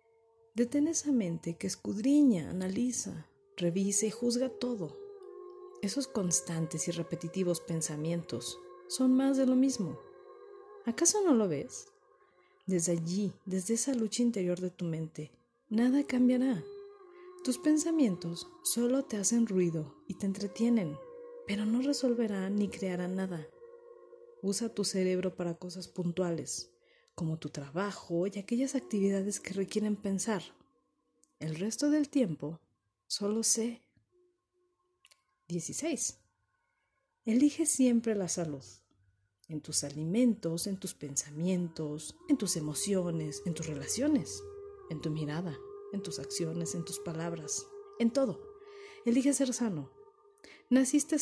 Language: Spanish